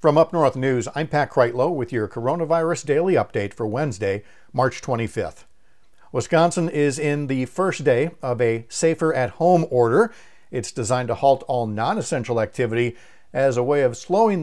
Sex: male